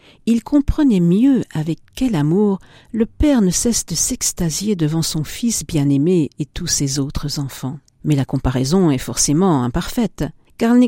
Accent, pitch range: French, 150-225 Hz